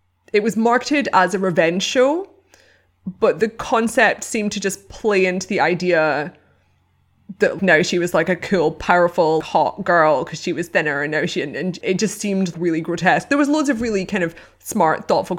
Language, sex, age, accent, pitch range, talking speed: English, female, 20-39, British, 165-195 Hz, 190 wpm